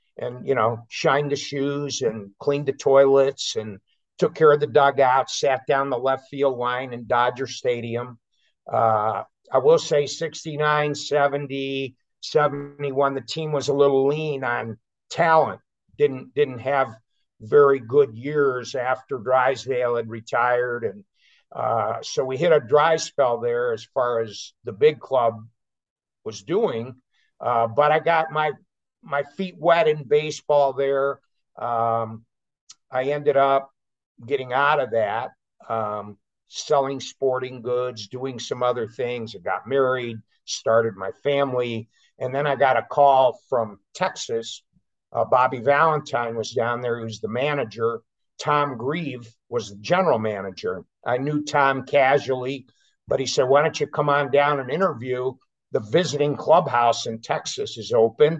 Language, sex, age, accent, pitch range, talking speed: English, male, 60-79, American, 120-145 Hz, 150 wpm